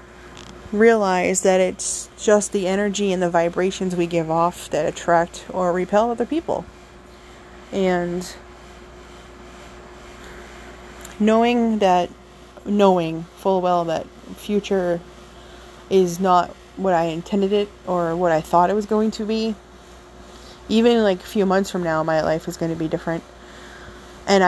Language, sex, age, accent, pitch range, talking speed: English, female, 20-39, American, 175-195 Hz, 135 wpm